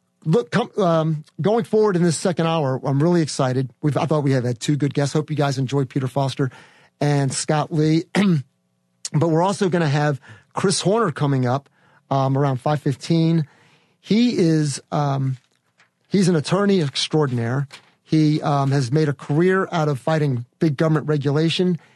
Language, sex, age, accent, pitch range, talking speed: English, male, 30-49, American, 135-165 Hz, 165 wpm